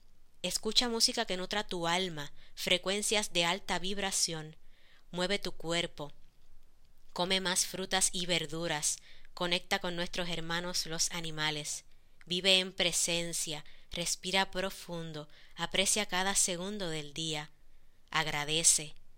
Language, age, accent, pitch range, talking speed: Spanish, 30-49, American, 155-185 Hz, 110 wpm